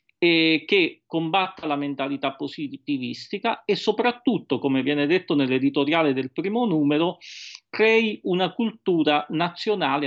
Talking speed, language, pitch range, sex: 115 wpm, Italian, 140-195 Hz, male